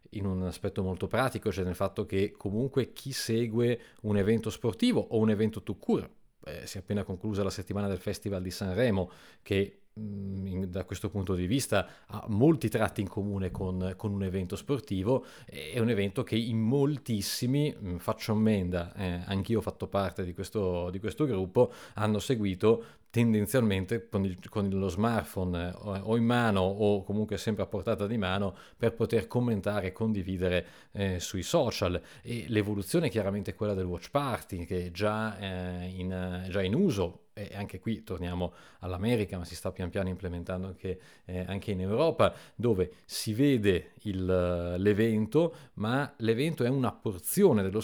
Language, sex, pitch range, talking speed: Italian, male, 95-115 Hz, 175 wpm